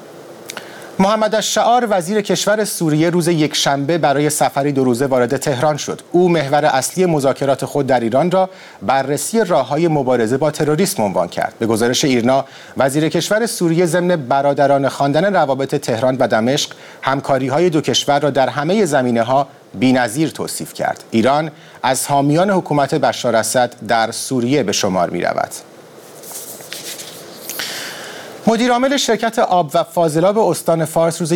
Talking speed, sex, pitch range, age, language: 140 wpm, male, 130-170 Hz, 40-59, Persian